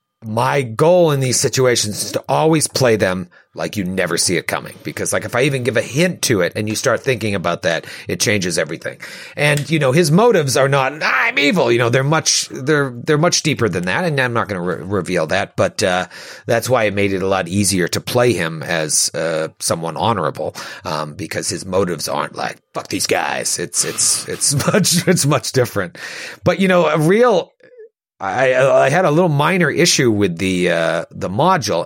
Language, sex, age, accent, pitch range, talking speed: English, male, 40-59, American, 105-170 Hz, 215 wpm